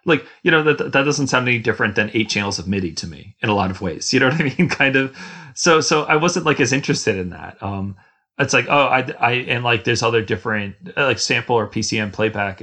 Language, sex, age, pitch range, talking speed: English, male, 30-49, 105-135 Hz, 250 wpm